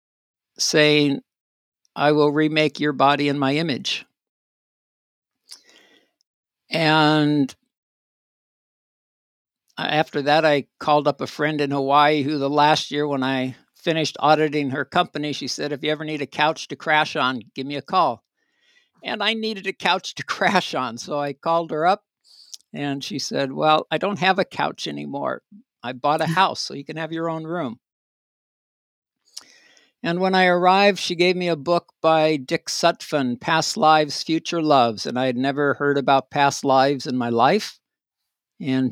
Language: English